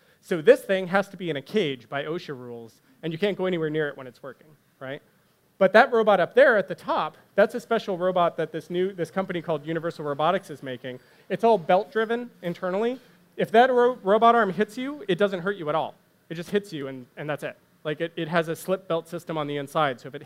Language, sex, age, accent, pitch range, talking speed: English, male, 30-49, American, 145-185 Hz, 250 wpm